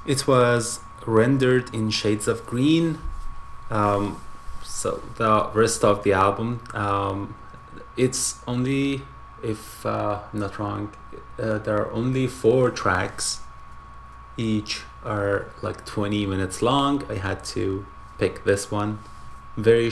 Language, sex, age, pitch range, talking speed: English, male, 20-39, 100-120 Hz, 125 wpm